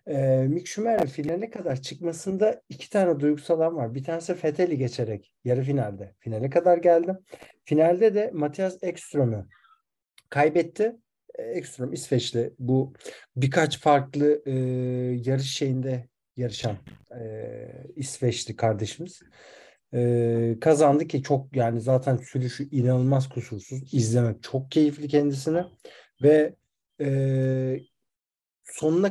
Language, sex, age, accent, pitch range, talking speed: Turkish, male, 50-69, native, 125-170 Hz, 110 wpm